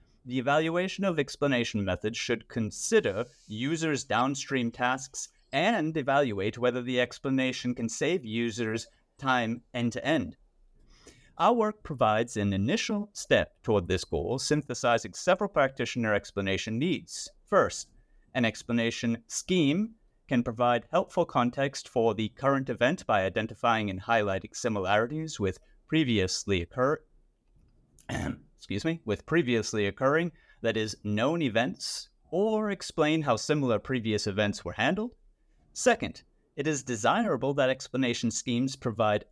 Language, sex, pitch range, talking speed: English, male, 110-150 Hz, 120 wpm